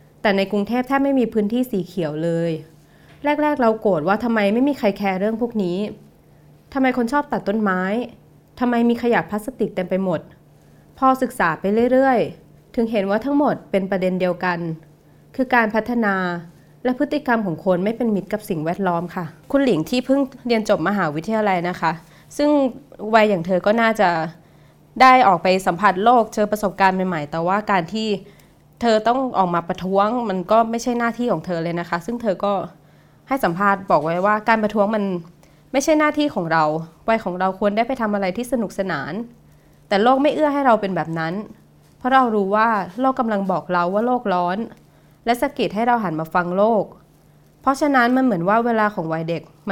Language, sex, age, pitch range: Thai, female, 20-39, 180-235 Hz